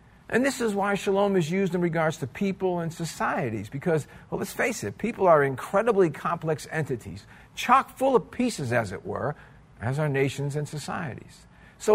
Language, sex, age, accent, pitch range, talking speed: English, male, 50-69, American, 130-185 Hz, 180 wpm